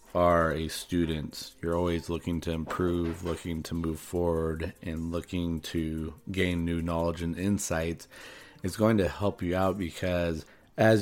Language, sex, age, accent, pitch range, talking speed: English, male, 30-49, American, 80-90 Hz, 150 wpm